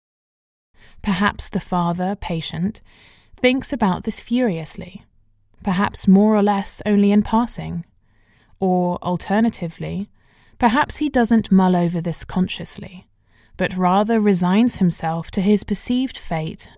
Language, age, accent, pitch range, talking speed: English, 20-39, British, 165-215 Hz, 115 wpm